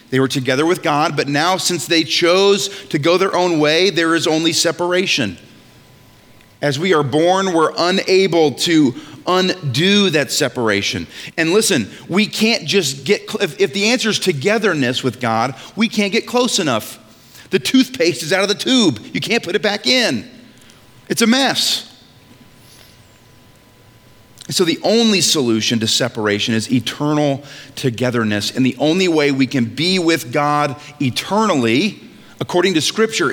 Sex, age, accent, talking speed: male, 40-59, American, 155 wpm